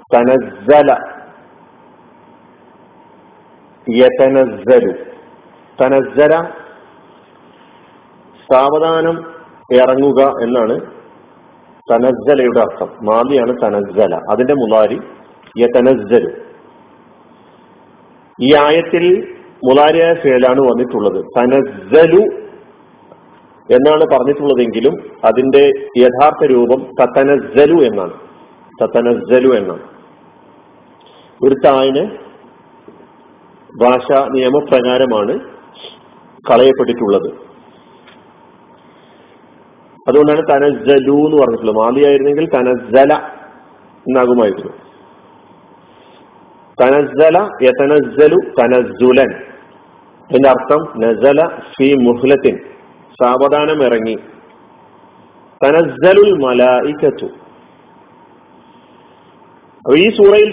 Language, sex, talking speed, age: Malayalam, male, 50 wpm, 50-69